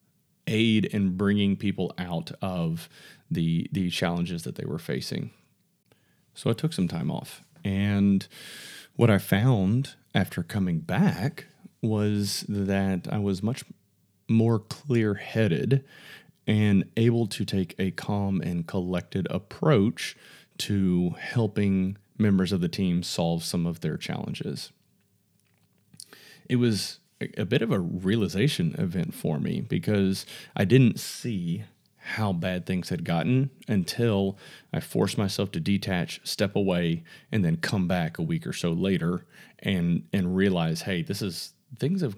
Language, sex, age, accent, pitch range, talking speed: English, male, 30-49, American, 90-115 Hz, 140 wpm